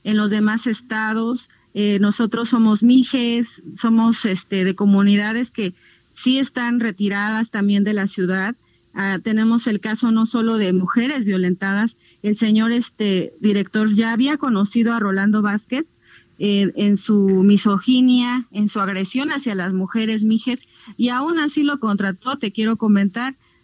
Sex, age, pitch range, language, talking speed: female, 40-59, 200-235 Hz, Spanish, 145 wpm